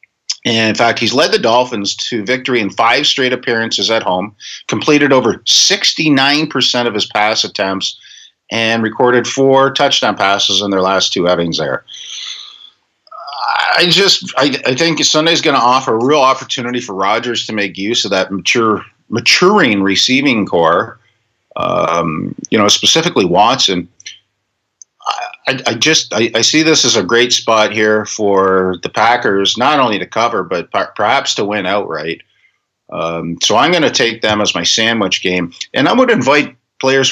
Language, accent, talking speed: English, American, 165 wpm